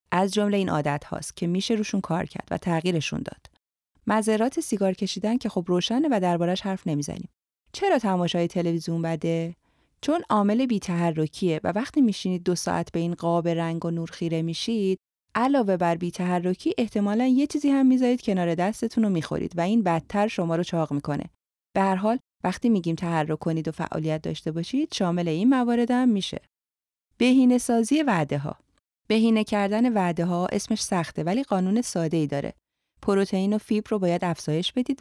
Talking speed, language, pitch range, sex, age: 175 wpm, Persian, 165-220 Hz, female, 30-49